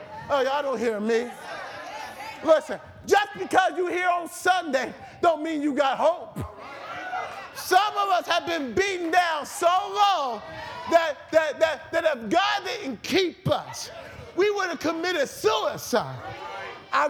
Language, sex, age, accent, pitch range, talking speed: English, male, 40-59, American, 225-310 Hz, 145 wpm